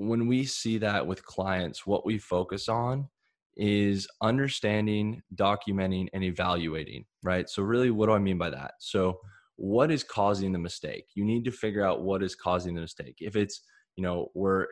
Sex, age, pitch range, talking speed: male, 10-29, 90-105 Hz, 185 wpm